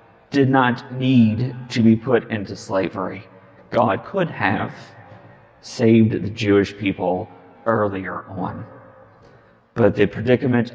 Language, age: English, 40-59